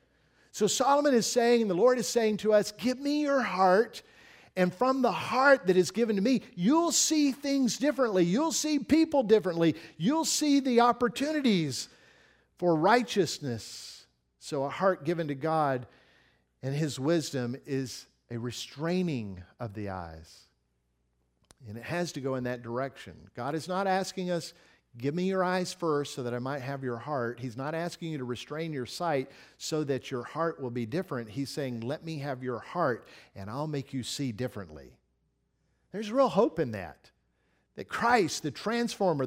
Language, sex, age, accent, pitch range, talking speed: English, male, 50-69, American, 125-200 Hz, 175 wpm